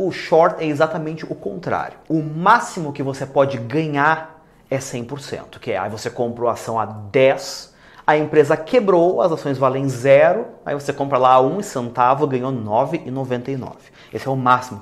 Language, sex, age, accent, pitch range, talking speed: English, male, 30-49, Brazilian, 125-170 Hz, 180 wpm